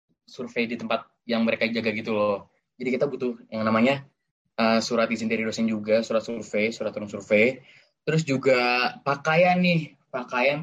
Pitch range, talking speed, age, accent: 110-135 Hz, 165 wpm, 10-29, native